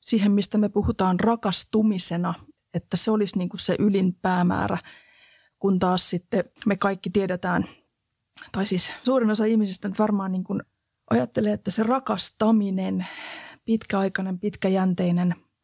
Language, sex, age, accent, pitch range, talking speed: Finnish, female, 30-49, native, 180-205 Hz, 125 wpm